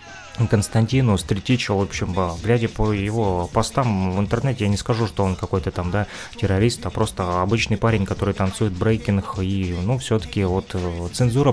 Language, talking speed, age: Russian, 165 wpm, 20-39